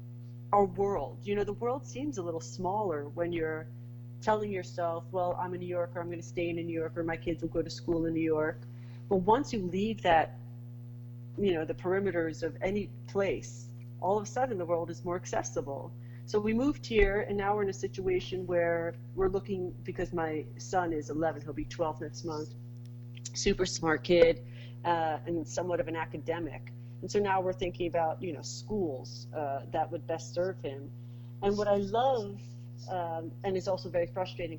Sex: female